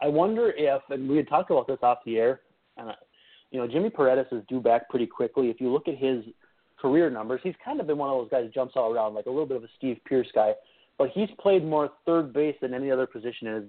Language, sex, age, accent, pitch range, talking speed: English, male, 30-49, American, 120-155 Hz, 270 wpm